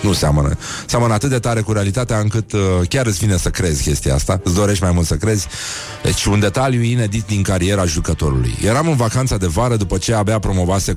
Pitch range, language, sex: 90-115 Hz, Romanian, male